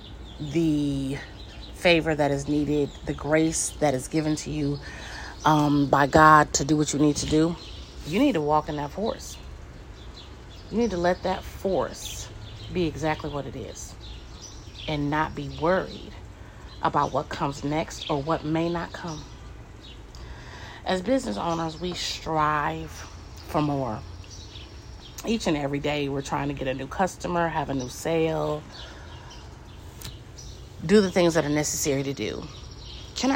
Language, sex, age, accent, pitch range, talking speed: English, female, 30-49, American, 125-165 Hz, 150 wpm